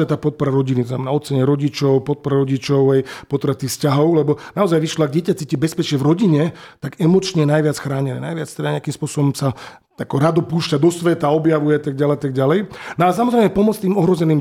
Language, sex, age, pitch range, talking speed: Slovak, male, 40-59, 140-165 Hz, 185 wpm